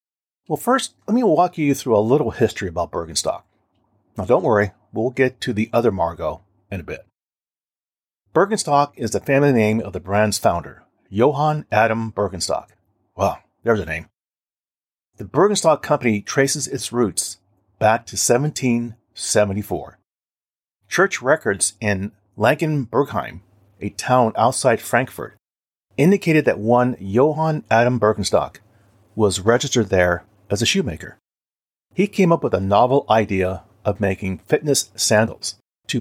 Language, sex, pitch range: English, male, 100-135 Hz